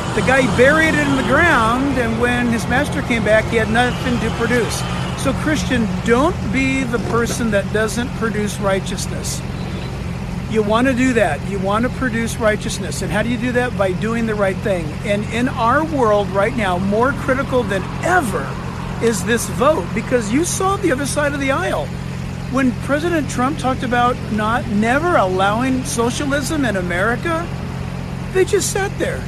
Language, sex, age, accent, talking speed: English, male, 50-69, American, 175 wpm